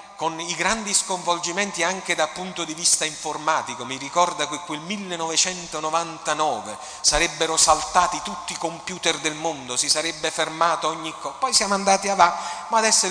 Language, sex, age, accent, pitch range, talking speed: Italian, male, 40-59, native, 160-220 Hz, 150 wpm